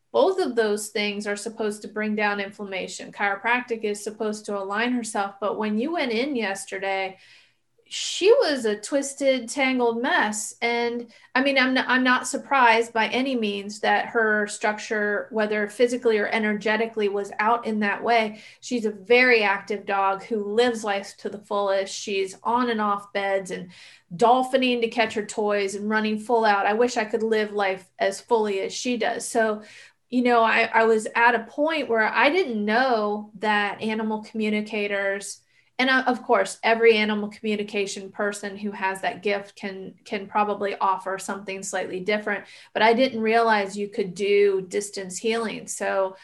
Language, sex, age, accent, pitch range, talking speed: English, female, 30-49, American, 205-235 Hz, 170 wpm